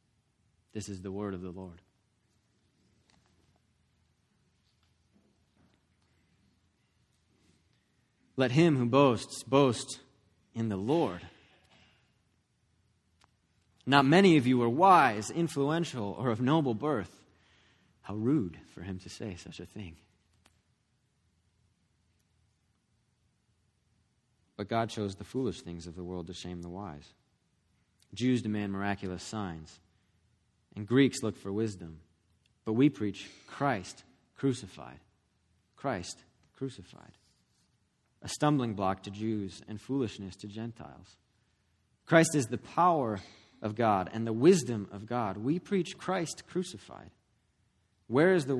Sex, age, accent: male, 30-49, American